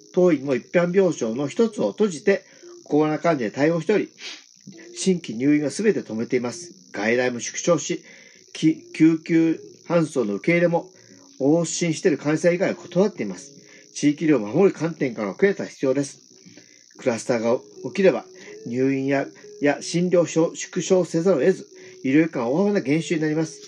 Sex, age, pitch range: male, 40-59, 145-190 Hz